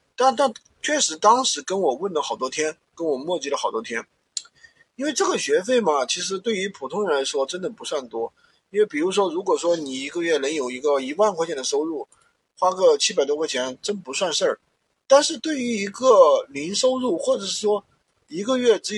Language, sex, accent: Chinese, male, native